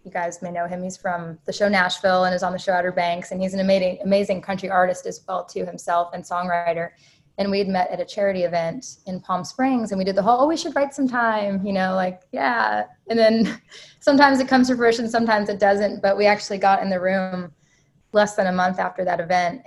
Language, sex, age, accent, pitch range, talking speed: English, female, 20-39, American, 180-200 Hz, 240 wpm